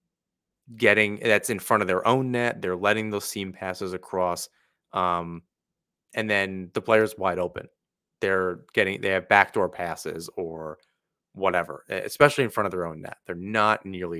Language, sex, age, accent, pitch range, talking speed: English, male, 30-49, American, 90-125 Hz, 165 wpm